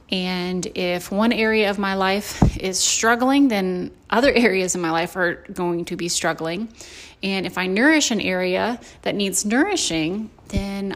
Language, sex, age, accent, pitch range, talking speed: English, female, 30-49, American, 175-210 Hz, 165 wpm